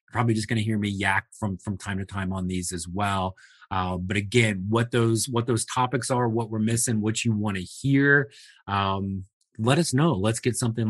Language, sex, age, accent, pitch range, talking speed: English, male, 30-49, American, 100-120 Hz, 220 wpm